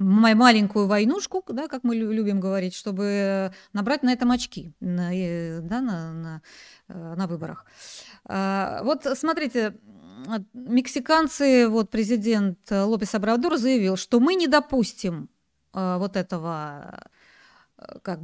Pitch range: 190-255 Hz